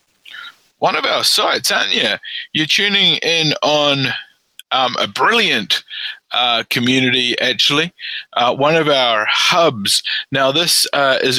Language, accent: English, Australian